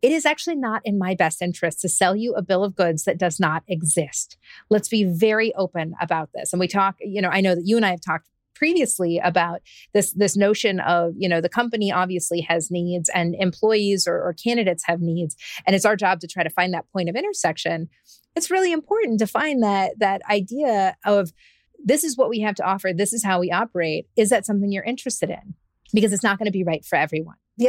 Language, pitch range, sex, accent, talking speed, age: English, 180-225 Hz, female, American, 230 wpm, 30-49